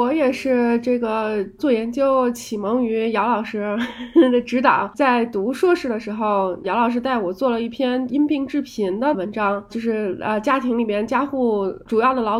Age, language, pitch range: 20-39, Chinese, 215-275 Hz